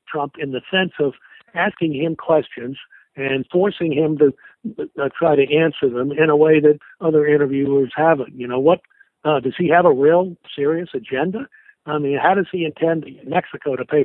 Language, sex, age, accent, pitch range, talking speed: English, male, 60-79, American, 135-175 Hz, 190 wpm